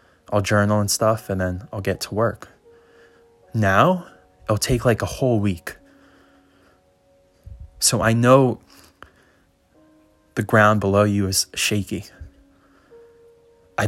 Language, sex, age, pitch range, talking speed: English, male, 20-39, 95-120 Hz, 115 wpm